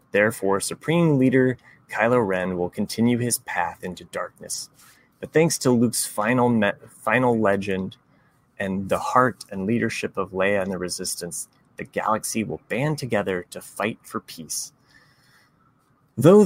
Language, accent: English, American